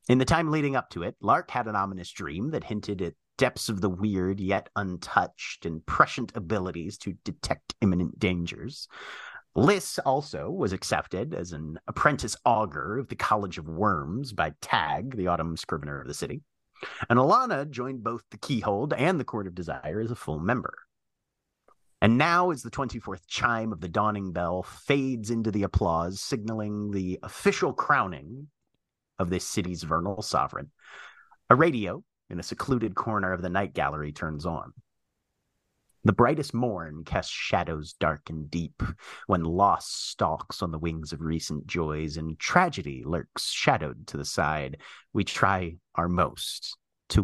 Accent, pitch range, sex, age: American, 80-110 Hz, male, 30-49